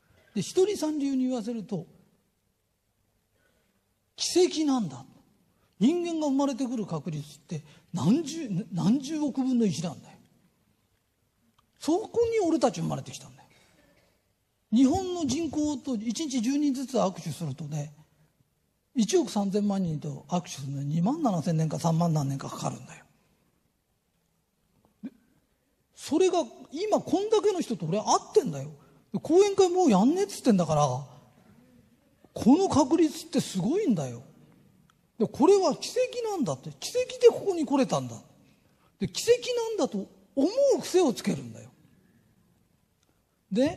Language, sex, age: Japanese, male, 40-59